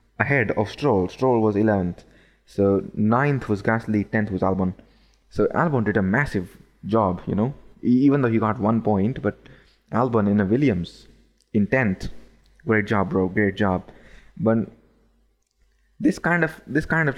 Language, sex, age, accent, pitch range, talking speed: English, male, 20-39, Indian, 100-120 Hz, 160 wpm